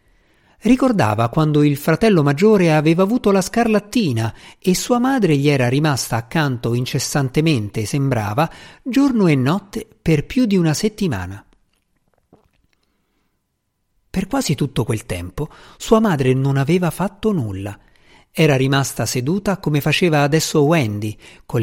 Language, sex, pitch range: Italian, male, 120-185 Hz